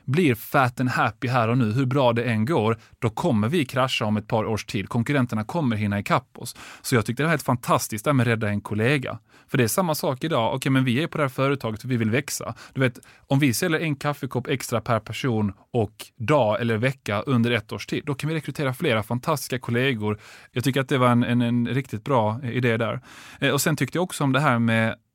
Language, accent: Swedish, native